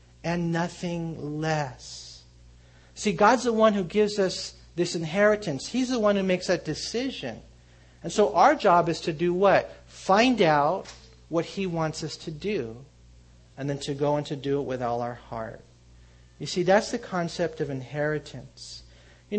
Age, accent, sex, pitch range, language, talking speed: 50-69, American, male, 130-190 Hz, English, 170 wpm